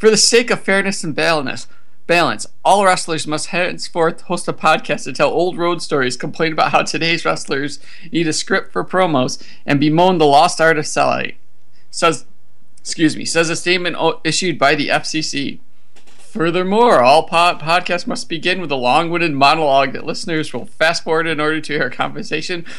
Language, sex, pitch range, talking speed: English, male, 150-180 Hz, 170 wpm